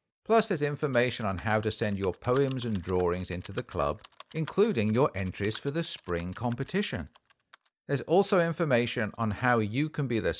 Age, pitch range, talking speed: 50-69, 105-150 Hz, 175 wpm